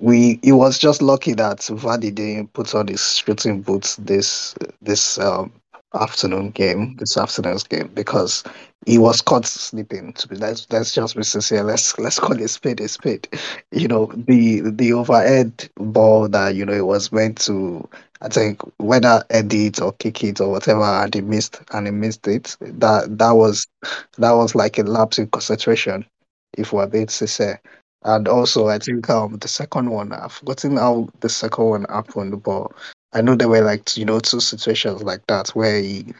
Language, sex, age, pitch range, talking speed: English, male, 20-39, 105-115 Hz, 185 wpm